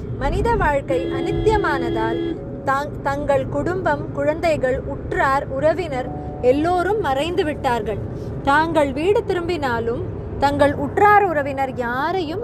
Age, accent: 20-39, native